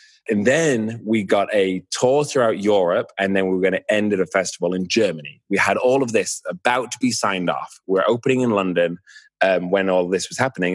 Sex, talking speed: male, 225 wpm